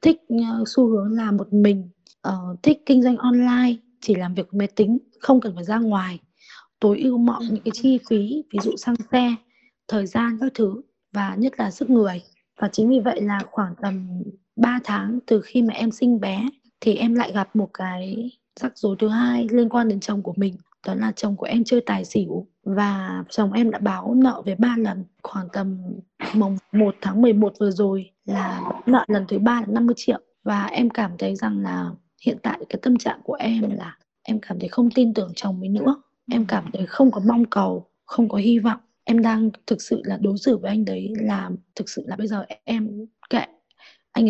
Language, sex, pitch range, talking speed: Vietnamese, female, 200-240 Hz, 215 wpm